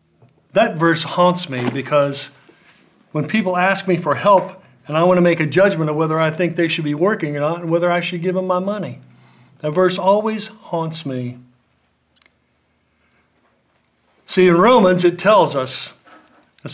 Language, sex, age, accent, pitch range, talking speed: English, male, 50-69, American, 140-180 Hz, 170 wpm